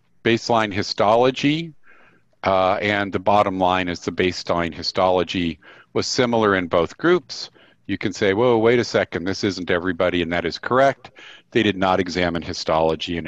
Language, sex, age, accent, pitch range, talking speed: English, male, 50-69, American, 85-110 Hz, 165 wpm